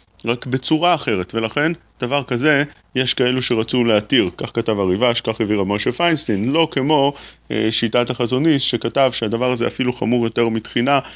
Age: 30-49